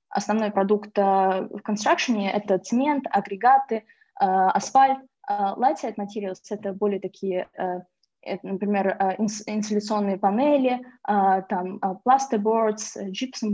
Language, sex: Russian, female